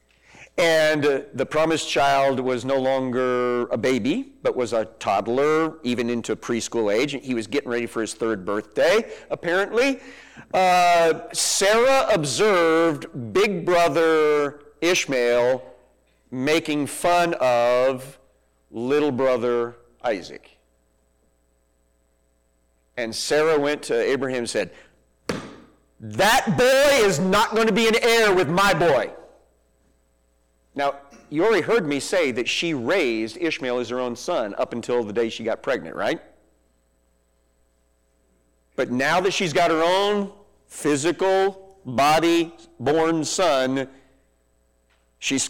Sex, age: male, 40-59